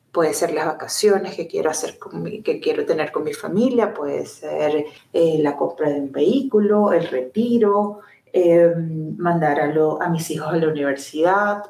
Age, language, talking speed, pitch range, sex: 30-49, Spanish, 180 wpm, 170-230 Hz, female